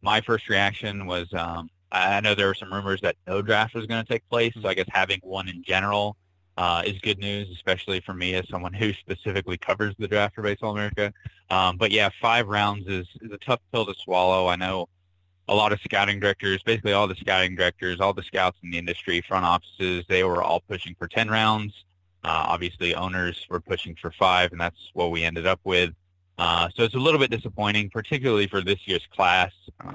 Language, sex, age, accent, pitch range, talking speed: English, male, 20-39, American, 90-100 Hz, 215 wpm